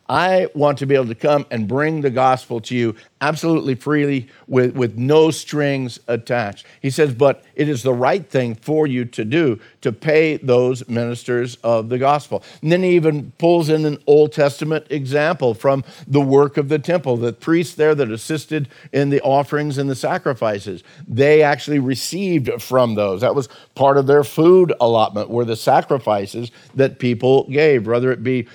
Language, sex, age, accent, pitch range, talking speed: English, male, 50-69, American, 120-155 Hz, 185 wpm